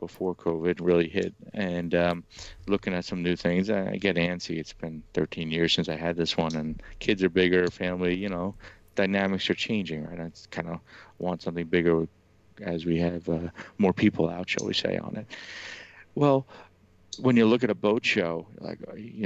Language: English